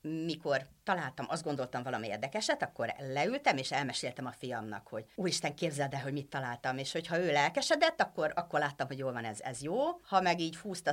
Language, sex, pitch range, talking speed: Hungarian, female, 135-190 Hz, 200 wpm